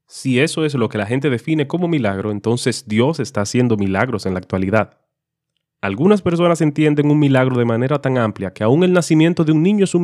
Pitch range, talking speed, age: 105-150 Hz, 215 wpm, 30-49